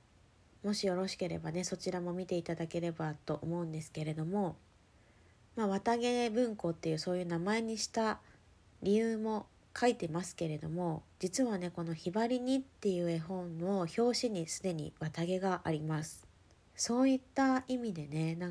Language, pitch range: Japanese, 160-220 Hz